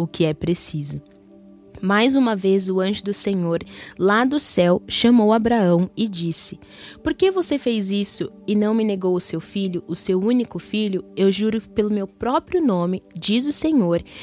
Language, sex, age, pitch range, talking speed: Portuguese, female, 10-29, 180-230 Hz, 180 wpm